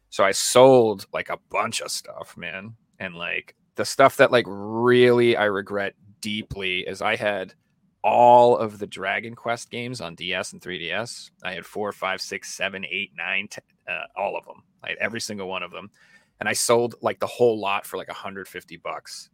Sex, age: male, 30-49